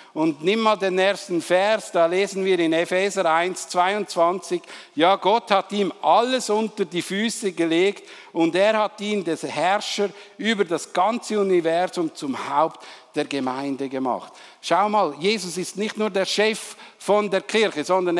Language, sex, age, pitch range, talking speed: German, male, 60-79, 175-215 Hz, 160 wpm